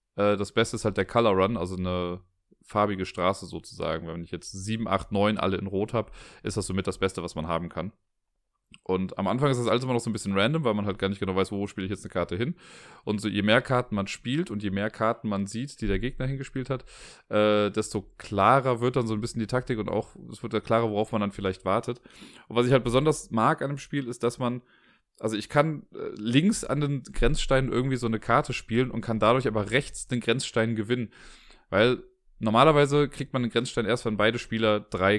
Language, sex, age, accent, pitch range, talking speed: German, male, 30-49, German, 100-130 Hz, 235 wpm